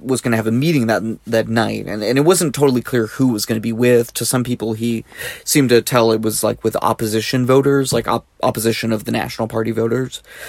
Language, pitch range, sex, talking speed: English, 110-125 Hz, male, 245 wpm